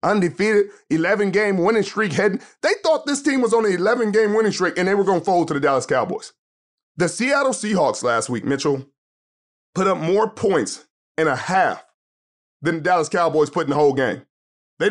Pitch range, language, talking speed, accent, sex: 170-230 Hz, English, 195 wpm, American, male